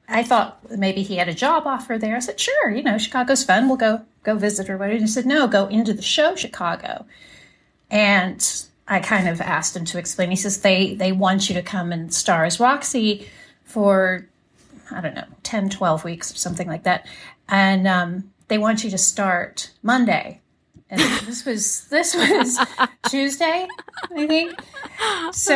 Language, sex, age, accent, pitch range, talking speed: English, female, 30-49, American, 180-235 Hz, 185 wpm